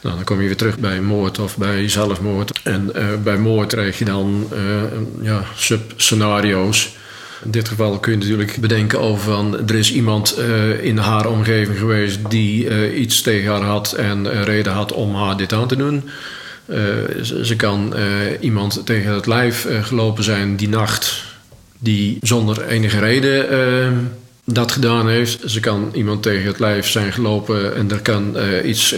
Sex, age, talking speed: male, 50-69, 185 wpm